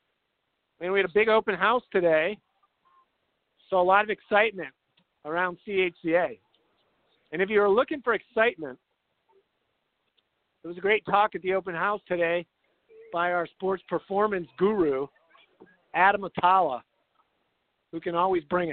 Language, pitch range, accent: English, 175-215 Hz, American